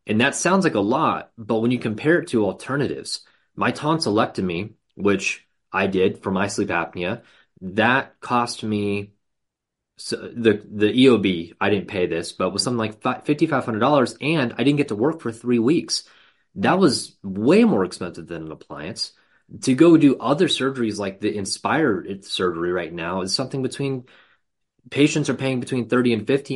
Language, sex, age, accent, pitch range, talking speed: English, male, 30-49, American, 100-125 Hz, 185 wpm